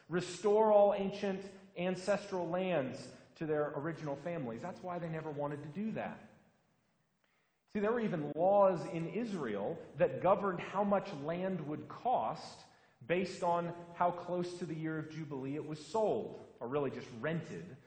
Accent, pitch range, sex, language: American, 140-195 Hz, male, English